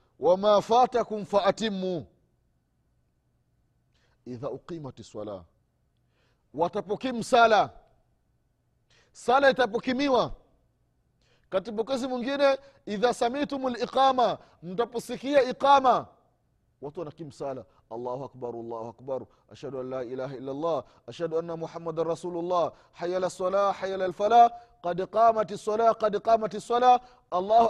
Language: Swahili